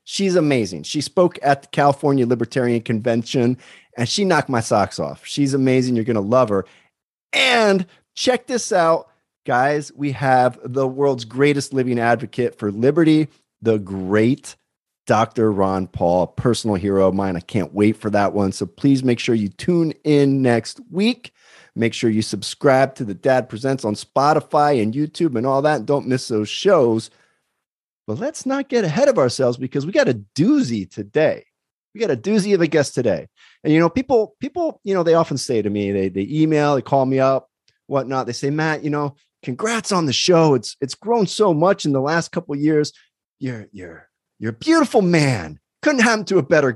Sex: male